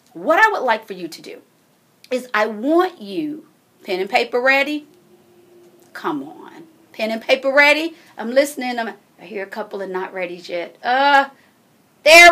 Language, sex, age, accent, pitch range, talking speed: English, female, 40-59, American, 210-340 Hz, 170 wpm